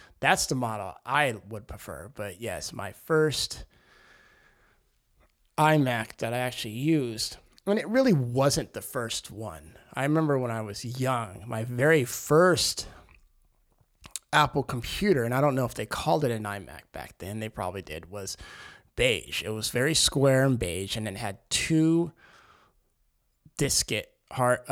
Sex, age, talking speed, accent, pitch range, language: male, 30-49, 155 wpm, American, 110-140 Hz, English